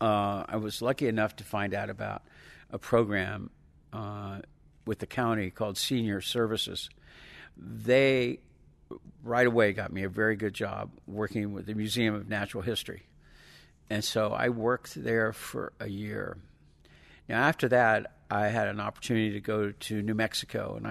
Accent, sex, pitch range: American, male, 100-115 Hz